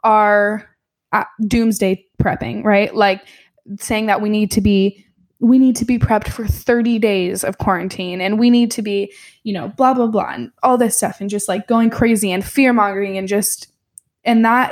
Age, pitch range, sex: 10-29, 200-235 Hz, female